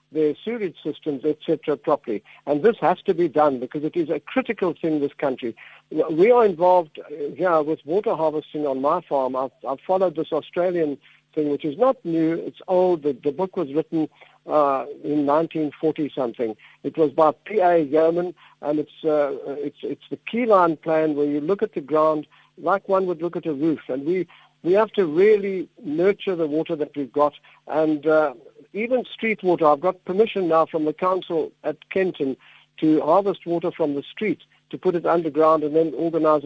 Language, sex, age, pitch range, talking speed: English, male, 50-69, 150-185 Hz, 195 wpm